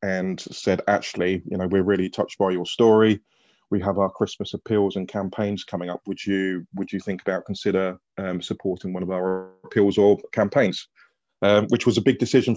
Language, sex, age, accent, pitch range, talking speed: English, male, 20-39, British, 100-110 Hz, 195 wpm